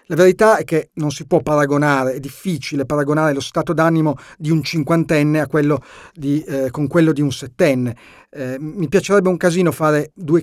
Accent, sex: native, male